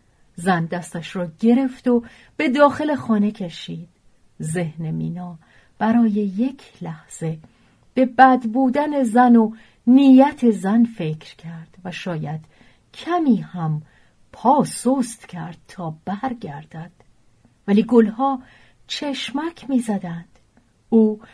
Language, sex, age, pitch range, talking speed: Persian, female, 40-59, 180-265 Hz, 105 wpm